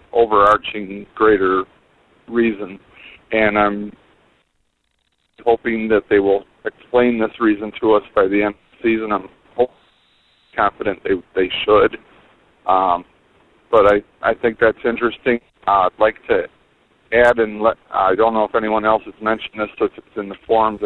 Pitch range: 100-120 Hz